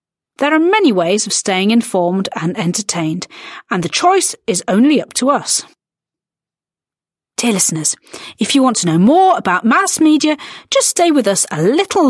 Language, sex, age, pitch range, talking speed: Slovak, female, 40-59, 185-280 Hz, 170 wpm